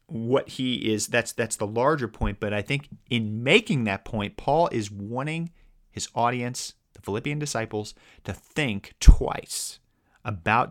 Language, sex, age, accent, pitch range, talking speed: English, male, 30-49, American, 110-140 Hz, 150 wpm